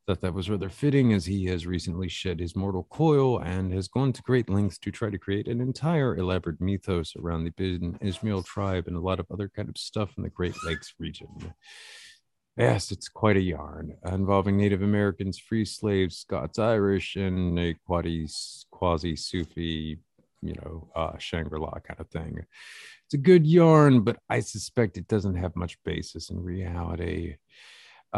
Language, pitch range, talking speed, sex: English, 85-105 Hz, 175 wpm, male